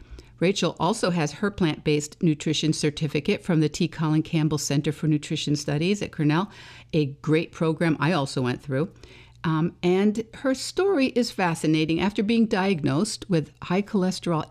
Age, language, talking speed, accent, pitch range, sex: 50-69, English, 155 wpm, American, 145-180 Hz, female